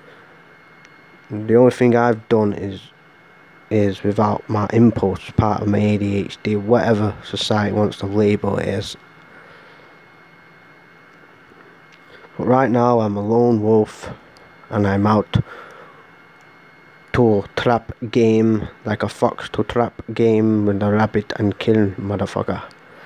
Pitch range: 100-115 Hz